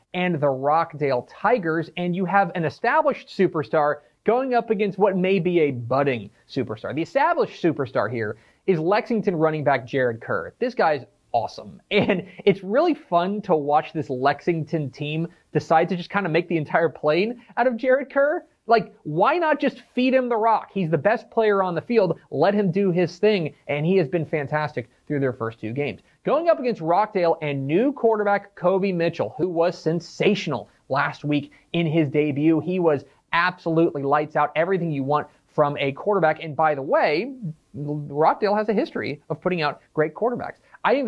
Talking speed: 185 wpm